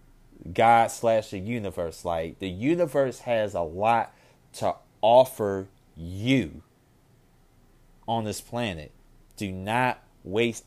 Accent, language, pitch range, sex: American, English, 90-120 Hz, male